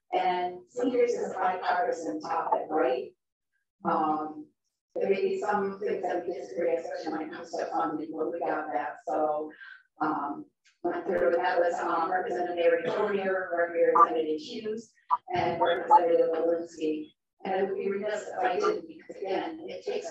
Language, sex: English, female